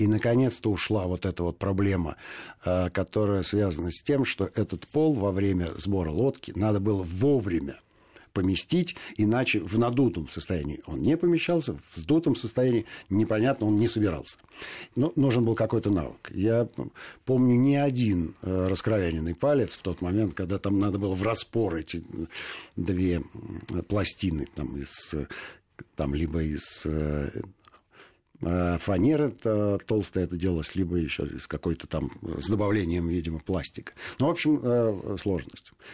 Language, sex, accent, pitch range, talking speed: Russian, male, native, 85-115 Hz, 135 wpm